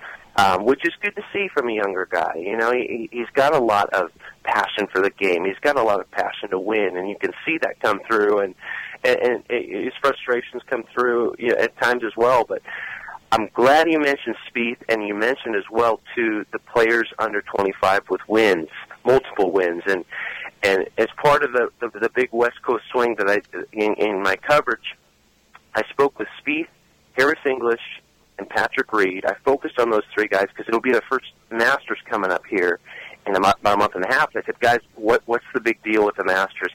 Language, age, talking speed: English, 40-59, 210 wpm